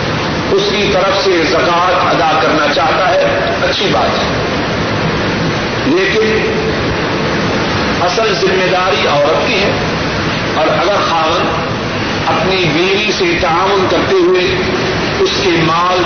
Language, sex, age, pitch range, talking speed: Urdu, male, 60-79, 160-185 Hz, 115 wpm